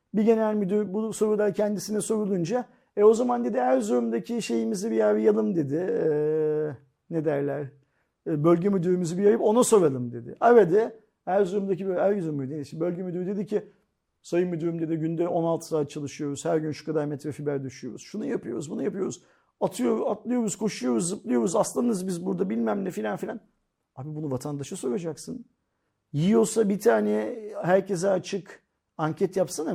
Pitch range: 150-220 Hz